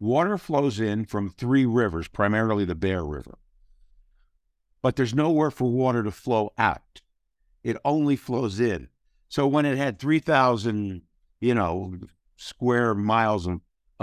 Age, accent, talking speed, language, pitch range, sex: 60-79, American, 135 wpm, English, 100-125 Hz, male